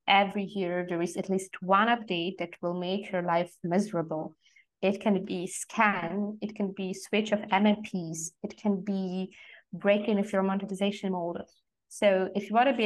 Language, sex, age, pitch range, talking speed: English, female, 20-39, 180-210 Hz, 175 wpm